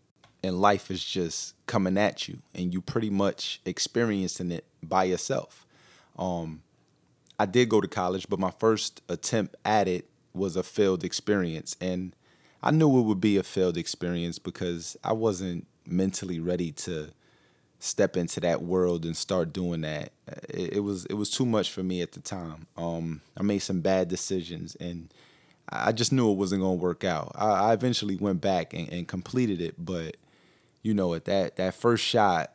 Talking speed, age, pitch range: 180 wpm, 30-49, 85-105 Hz